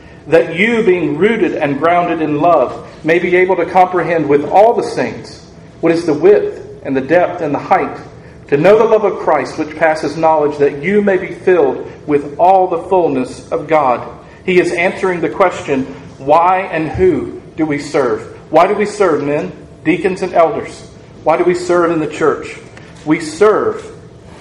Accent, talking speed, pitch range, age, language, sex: American, 185 wpm, 150-185 Hz, 40-59, English, male